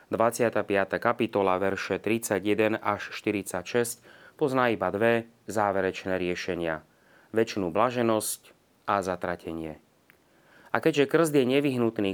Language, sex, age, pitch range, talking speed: Slovak, male, 30-49, 100-125 Hz, 100 wpm